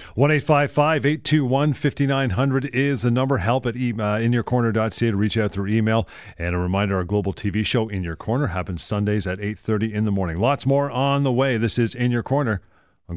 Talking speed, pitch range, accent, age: 250 wpm, 95-125 Hz, American, 40-59